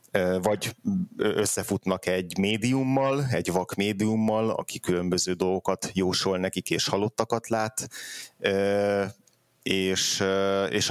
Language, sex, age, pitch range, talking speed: Hungarian, male, 30-49, 95-105 Hz, 95 wpm